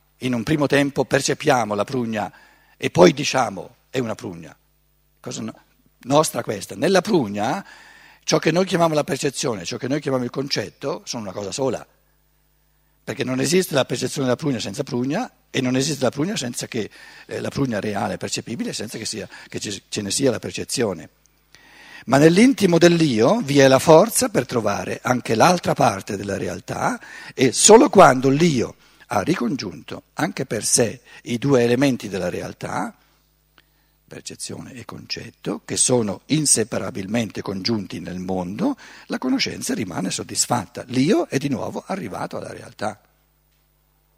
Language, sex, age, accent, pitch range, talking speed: Italian, male, 50-69, native, 125-170 Hz, 150 wpm